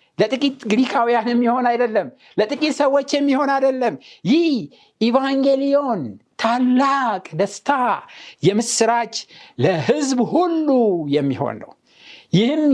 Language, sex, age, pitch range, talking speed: Amharic, male, 60-79, 165-245 Hz, 90 wpm